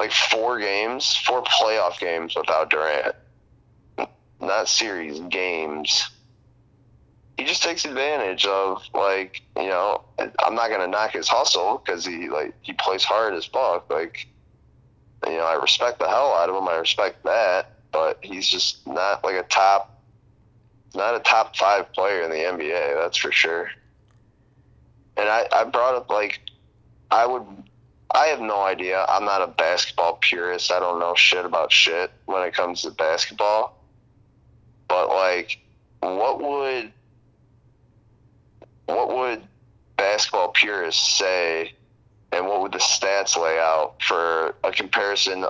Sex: male